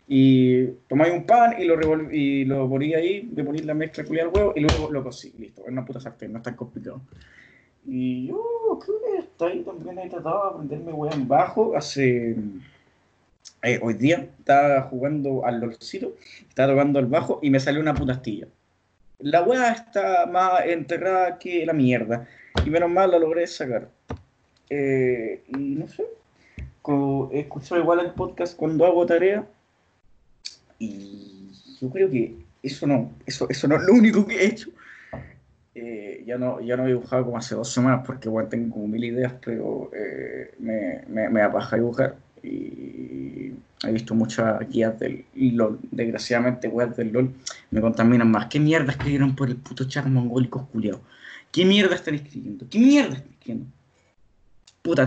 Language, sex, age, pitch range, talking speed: Spanish, male, 20-39, 120-170 Hz, 170 wpm